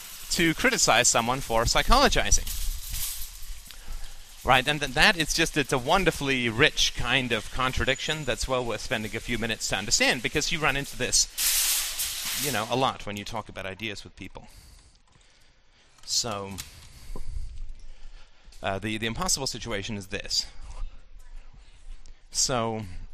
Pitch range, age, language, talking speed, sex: 95-135 Hz, 40-59, English, 135 wpm, male